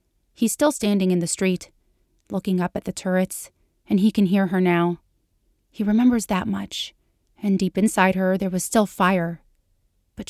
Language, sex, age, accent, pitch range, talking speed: English, female, 30-49, American, 175-205 Hz, 175 wpm